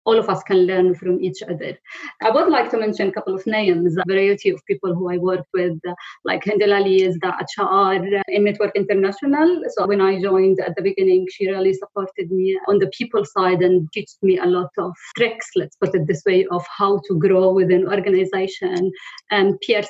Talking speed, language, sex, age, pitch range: 210 wpm, English, female, 20-39, 185-205 Hz